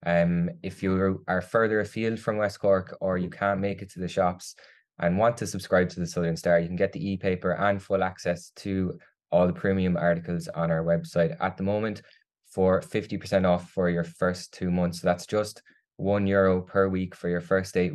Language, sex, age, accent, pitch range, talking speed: English, male, 20-39, Irish, 85-100 Hz, 210 wpm